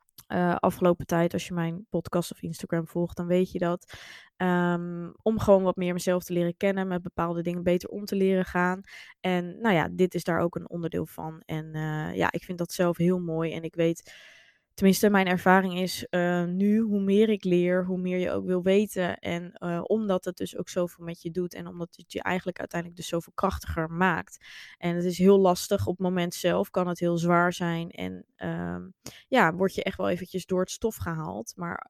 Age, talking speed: 20-39, 215 wpm